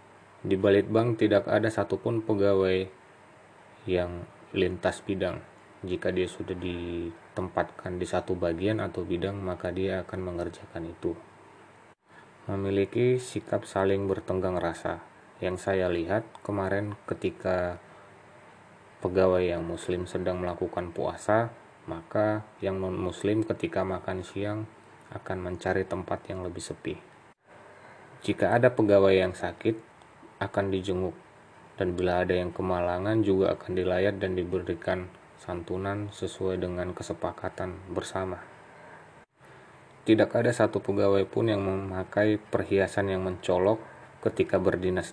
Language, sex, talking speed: Indonesian, male, 115 wpm